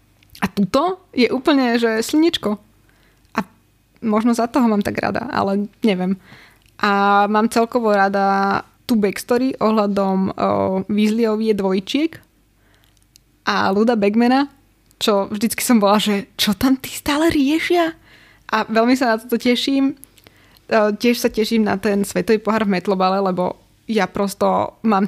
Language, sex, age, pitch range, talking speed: Slovak, female, 20-39, 200-250 Hz, 135 wpm